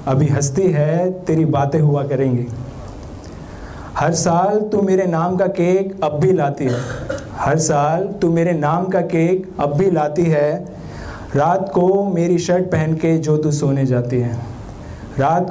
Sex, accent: male, native